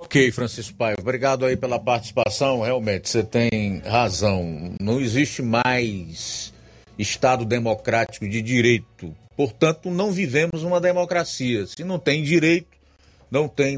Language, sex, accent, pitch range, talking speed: Portuguese, male, Brazilian, 105-130 Hz, 125 wpm